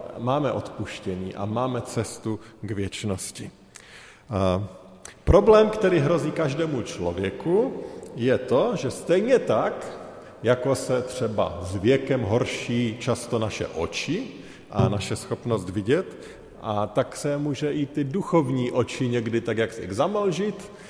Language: Slovak